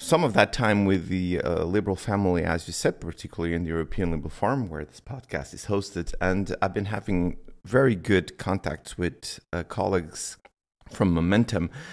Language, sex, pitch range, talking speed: English, male, 90-115 Hz, 175 wpm